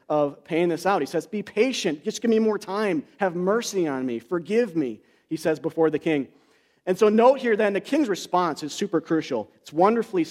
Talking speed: 215 wpm